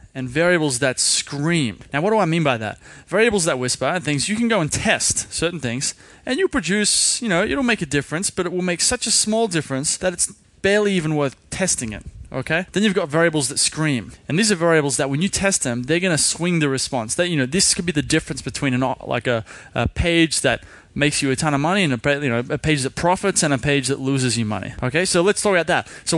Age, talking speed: 20-39, 255 wpm